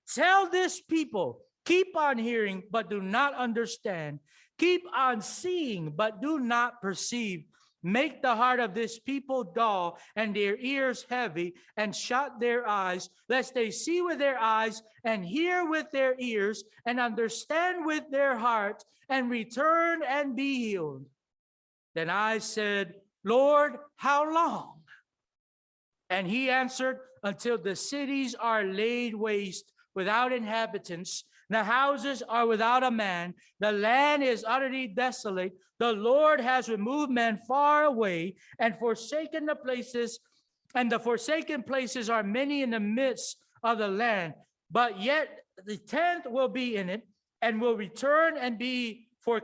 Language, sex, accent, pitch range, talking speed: English, male, American, 210-275 Hz, 145 wpm